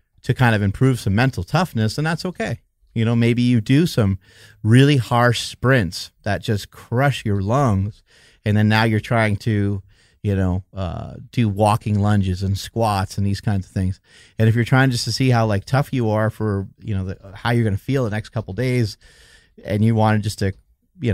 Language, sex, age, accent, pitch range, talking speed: English, male, 30-49, American, 100-120 Hz, 210 wpm